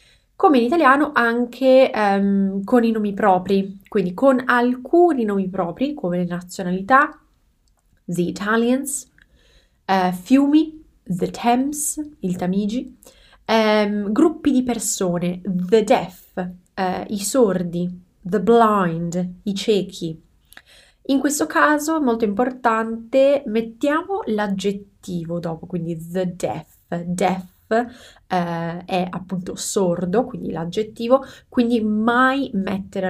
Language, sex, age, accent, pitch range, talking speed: Italian, female, 20-39, native, 180-250 Hz, 100 wpm